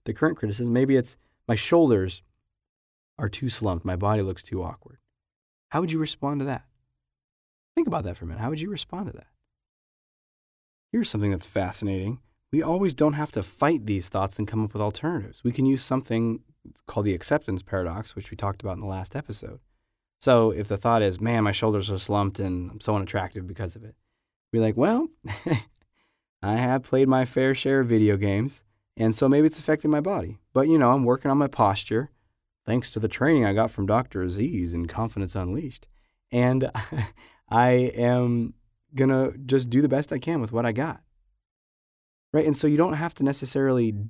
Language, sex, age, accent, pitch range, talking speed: English, male, 20-39, American, 100-135 Hz, 195 wpm